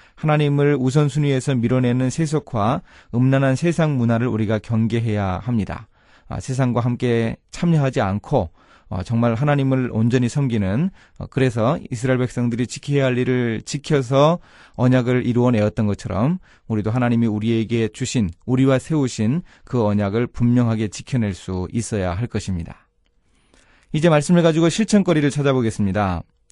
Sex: male